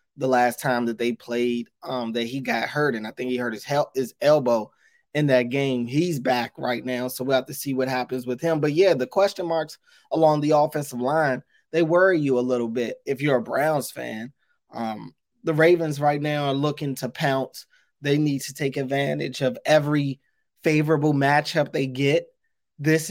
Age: 20-39